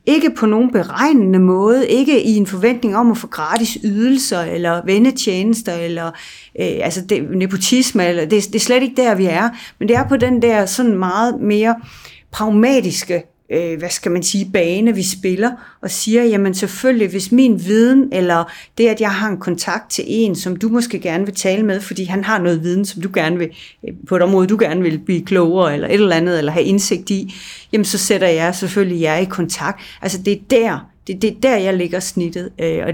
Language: Danish